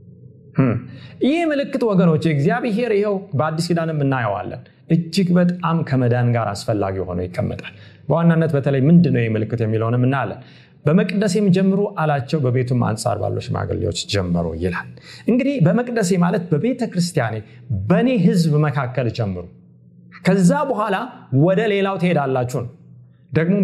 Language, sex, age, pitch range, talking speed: Amharic, male, 30-49, 120-180 Hz, 110 wpm